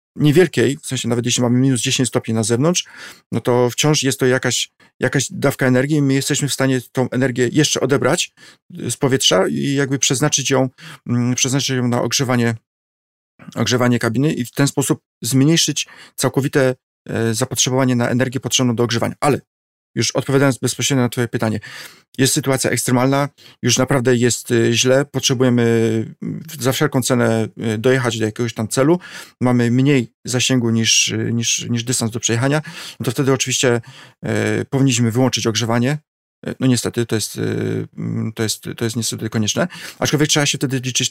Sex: male